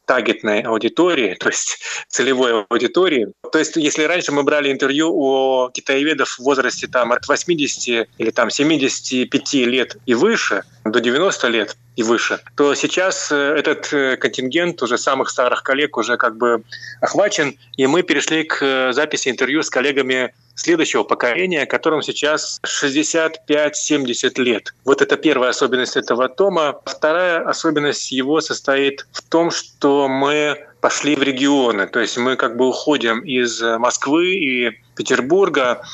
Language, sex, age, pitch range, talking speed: Russian, male, 20-39, 125-155 Hz, 135 wpm